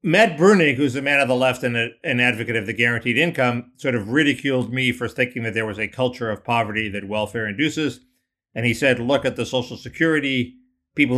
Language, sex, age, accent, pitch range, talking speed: English, male, 50-69, American, 115-140 Hz, 220 wpm